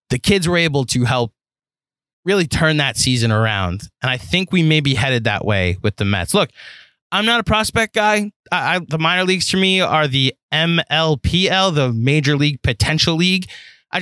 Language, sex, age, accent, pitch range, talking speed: English, male, 20-39, American, 120-175 Hz, 185 wpm